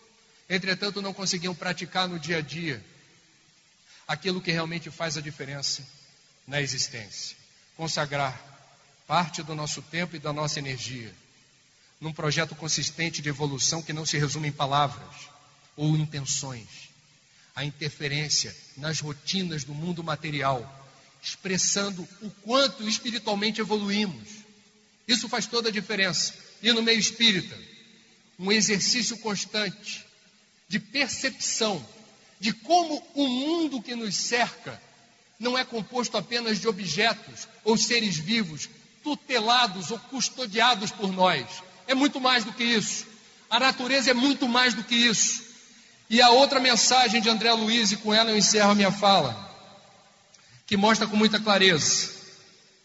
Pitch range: 155-225 Hz